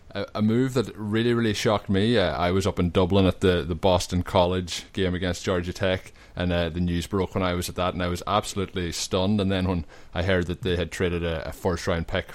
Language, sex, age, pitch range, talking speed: English, male, 20-39, 90-105 Hz, 245 wpm